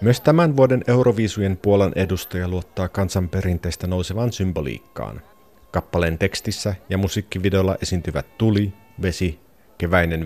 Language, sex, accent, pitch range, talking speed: Finnish, male, native, 90-120 Hz, 105 wpm